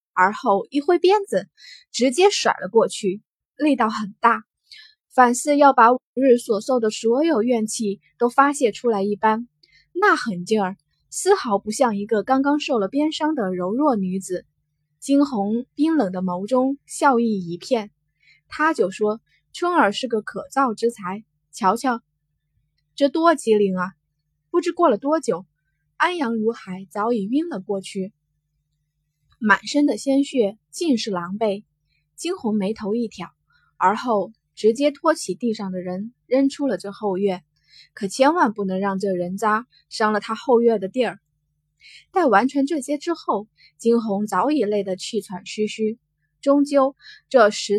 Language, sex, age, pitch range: Chinese, female, 10-29, 185-270 Hz